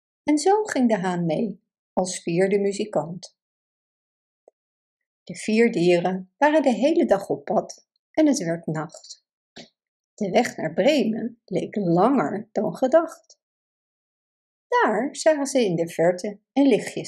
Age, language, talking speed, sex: 50-69, Dutch, 135 wpm, female